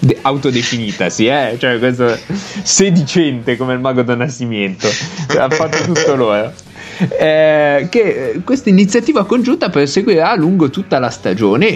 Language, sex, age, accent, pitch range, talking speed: Italian, male, 30-49, native, 120-175 Hz, 145 wpm